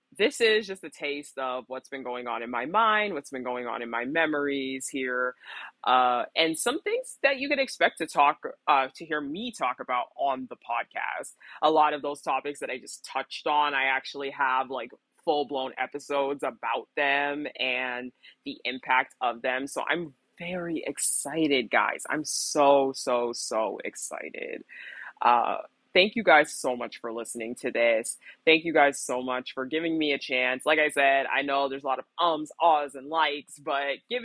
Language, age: English, 20-39